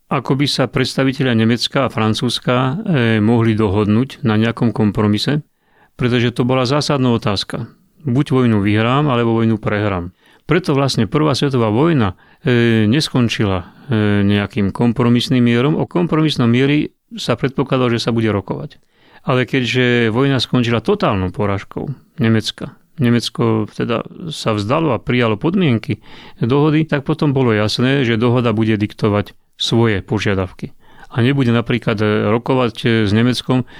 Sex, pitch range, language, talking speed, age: male, 110-135 Hz, Slovak, 130 wpm, 30-49